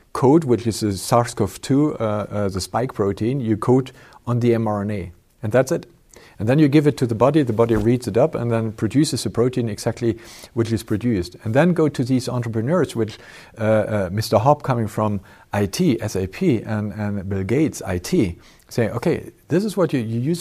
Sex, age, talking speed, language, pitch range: male, 50-69, 195 wpm, German, 110-135 Hz